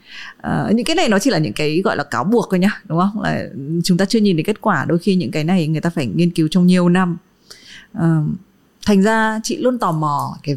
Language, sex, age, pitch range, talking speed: Vietnamese, female, 20-39, 165-215 Hz, 260 wpm